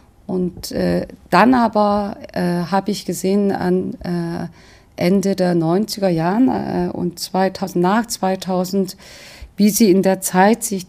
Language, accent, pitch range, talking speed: German, German, 175-200 Hz, 140 wpm